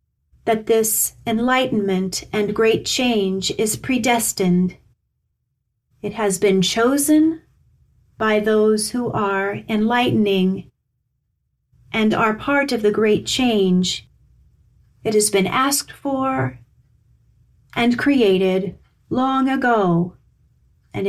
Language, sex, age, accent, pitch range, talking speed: English, female, 40-59, American, 190-245 Hz, 95 wpm